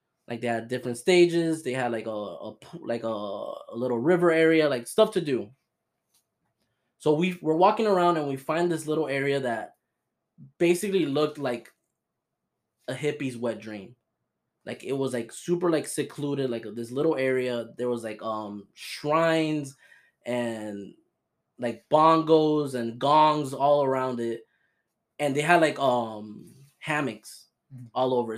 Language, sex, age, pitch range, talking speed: English, male, 10-29, 120-155 Hz, 150 wpm